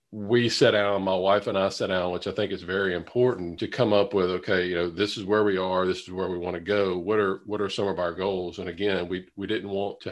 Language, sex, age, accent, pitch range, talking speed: English, male, 40-59, American, 95-115 Hz, 290 wpm